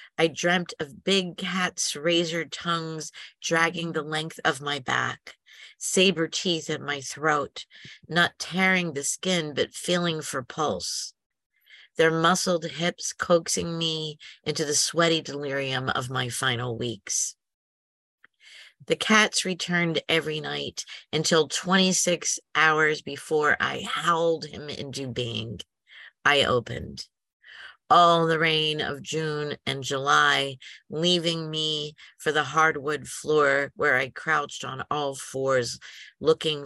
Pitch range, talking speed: 140-165 Hz, 125 wpm